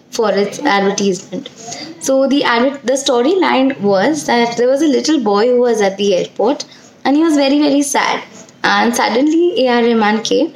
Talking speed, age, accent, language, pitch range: 175 wpm, 20-39, Indian, English, 215-265 Hz